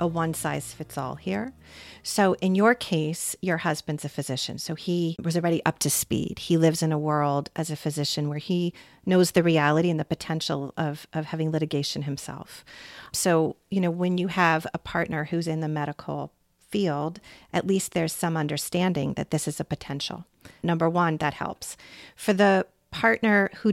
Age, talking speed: 40-59, 185 wpm